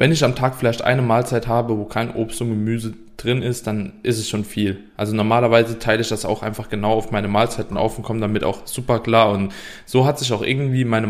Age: 20-39